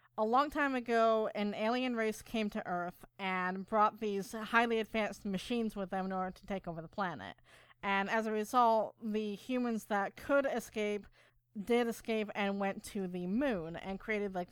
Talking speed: 180 wpm